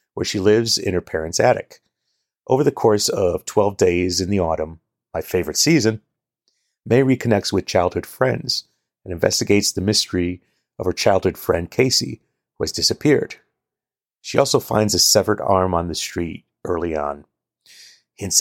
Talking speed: 155 wpm